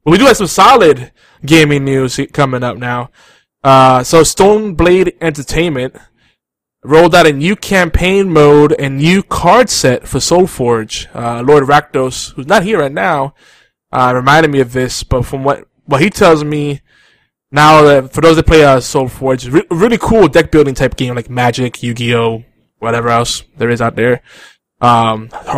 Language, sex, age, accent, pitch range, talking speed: English, male, 20-39, American, 125-160 Hz, 170 wpm